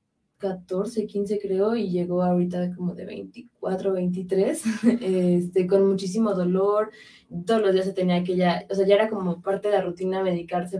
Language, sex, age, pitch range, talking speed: Spanish, female, 20-39, 180-200 Hz, 170 wpm